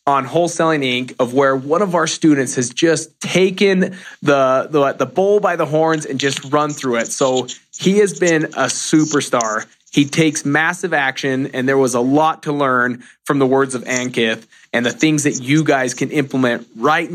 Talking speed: 190 wpm